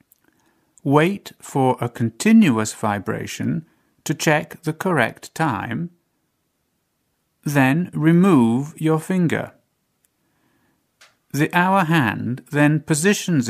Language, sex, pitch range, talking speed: Arabic, male, 120-165 Hz, 85 wpm